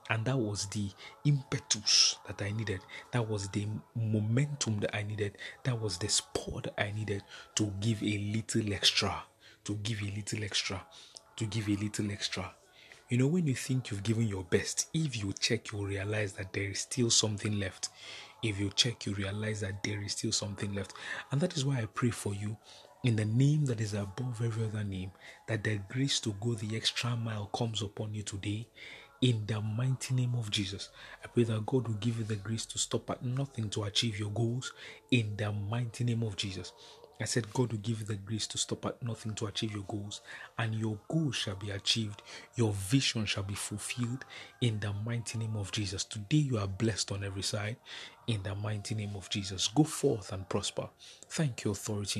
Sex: male